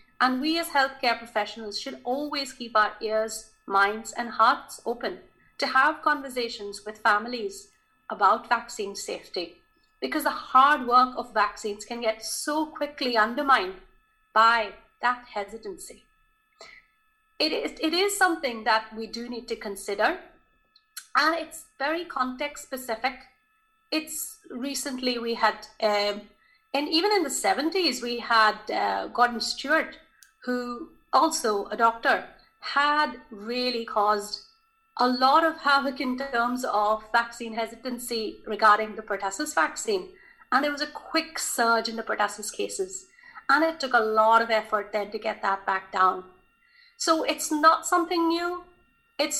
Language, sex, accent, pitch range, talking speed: English, female, Indian, 220-320 Hz, 140 wpm